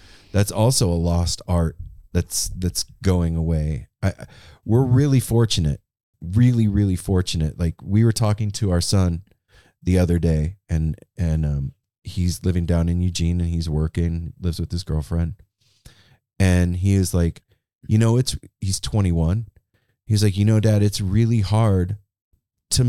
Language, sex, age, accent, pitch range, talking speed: English, male, 30-49, American, 90-115 Hz, 155 wpm